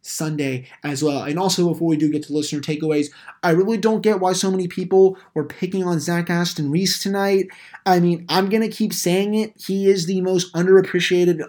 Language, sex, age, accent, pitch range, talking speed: English, male, 20-39, American, 145-175 Hz, 210 wpm